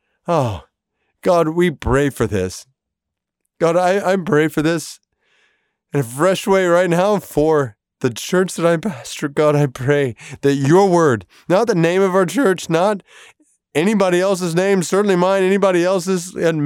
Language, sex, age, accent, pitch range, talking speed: English, male, 30-49, American, 135-180 Hz, 160 wpm